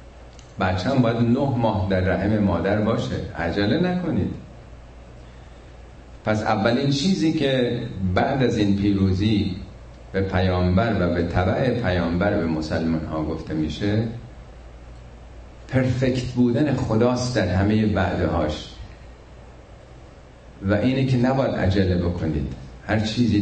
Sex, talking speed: male, 115 wpm